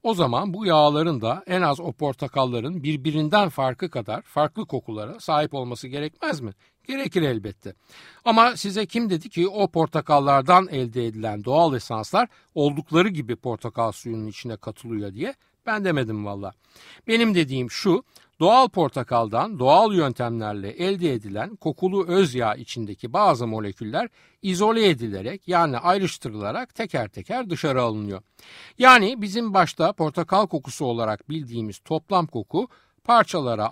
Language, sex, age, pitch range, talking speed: Turkish, male, 60-79, 115-190 Hz, 130 wpm